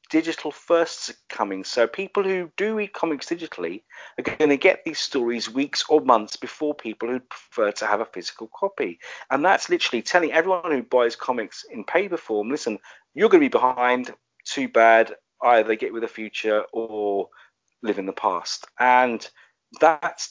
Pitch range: 110-160 Hz